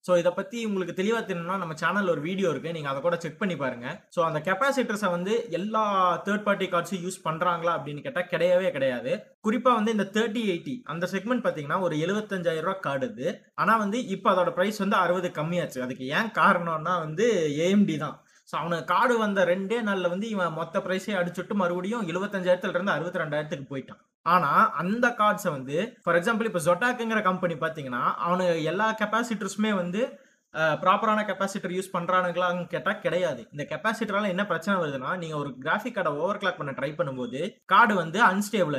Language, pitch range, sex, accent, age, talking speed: Tamil, 175-220 Hz, male, native, 20-39, 170 wpm